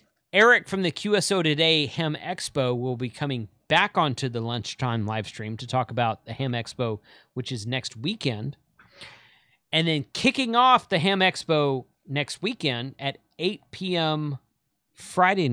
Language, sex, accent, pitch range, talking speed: English, male, American, 120-155 Hz, 150 wpm